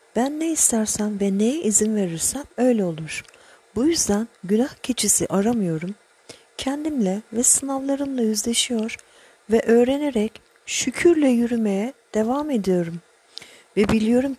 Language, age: Turkish, 50-69